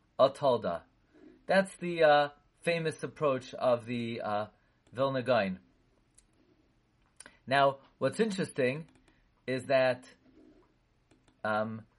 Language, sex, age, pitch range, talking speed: English, male, 30-49, 130-180 Hz, 85 wpm